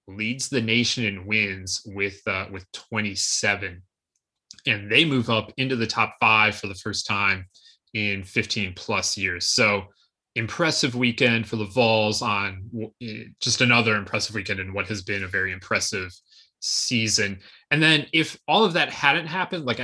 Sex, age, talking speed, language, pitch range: male, 20-39, 165 wpm, English, 100-120 Hz